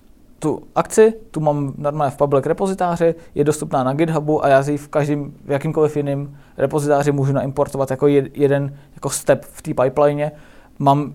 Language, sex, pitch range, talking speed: Czech, male, 130-150 Hz, 165 wpm